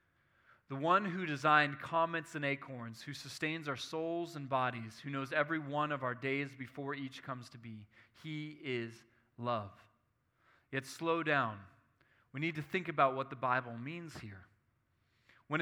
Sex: male